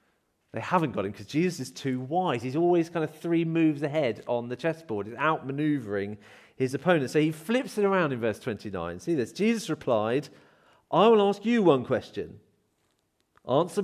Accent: British